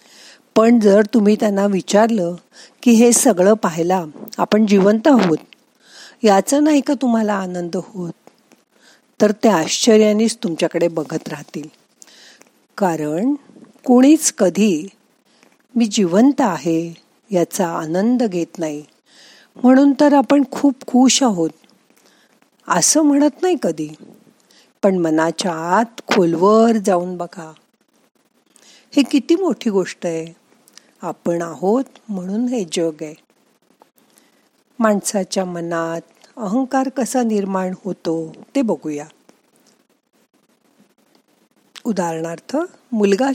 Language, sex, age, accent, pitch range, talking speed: Marathi, female, 50-69, native, 175-255 Hz, 100 wpm